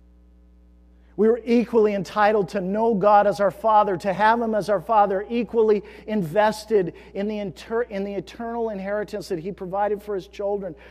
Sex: male